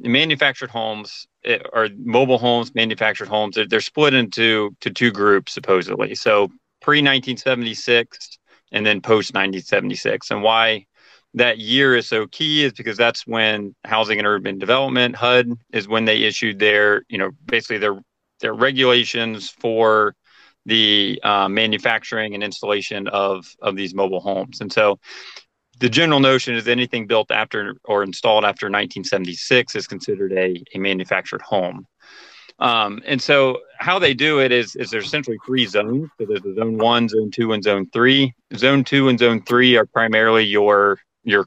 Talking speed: 160 wpm